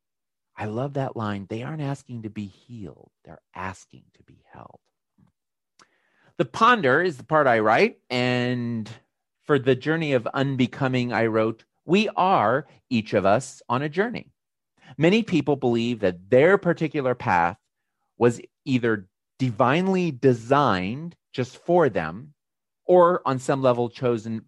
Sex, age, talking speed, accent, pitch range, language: male, 40-59, 140 wpm, American, 110-150 Hz, English